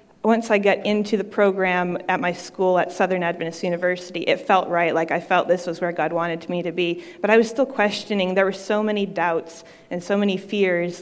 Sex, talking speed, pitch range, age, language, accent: female, 225 wpm, 175-210 Hz, 30-49, English, American